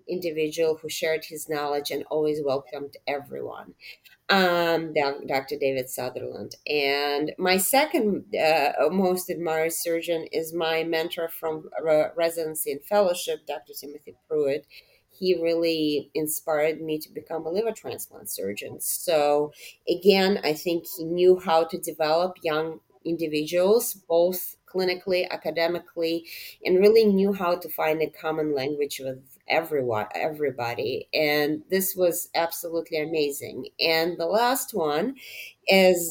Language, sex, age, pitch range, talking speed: English, female, 30-49, 150-180 Hz, 125 wpm